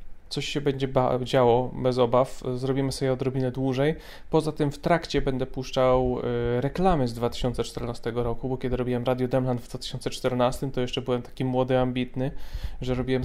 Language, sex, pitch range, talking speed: Polish, male, 120-140 Hz, 160 wpm